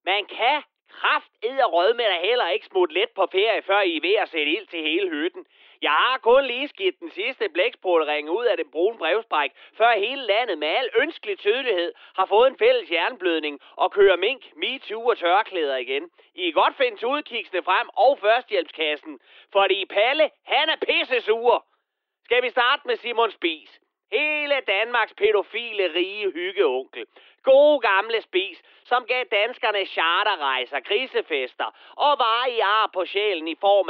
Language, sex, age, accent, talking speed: Danish, male, 30-49, native, 165 wpm